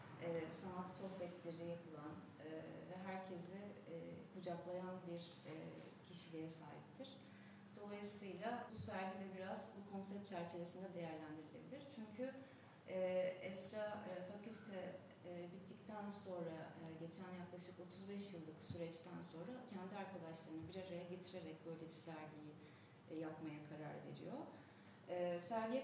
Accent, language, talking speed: native, Turkish, 115 wpm